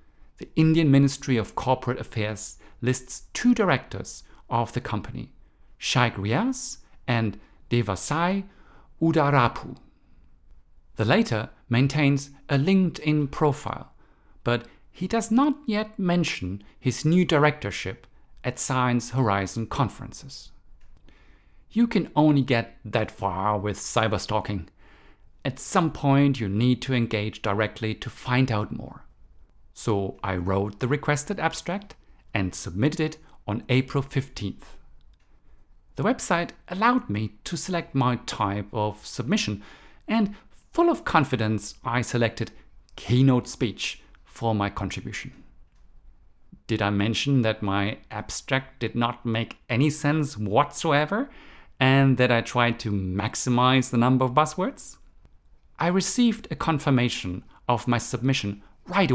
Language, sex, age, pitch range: English, male, 50-69, 105-145 Hz